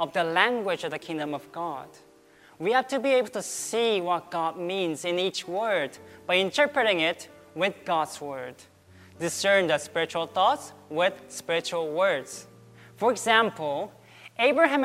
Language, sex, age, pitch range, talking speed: English, male, 20-39, 160-215 Hz, 150 wpm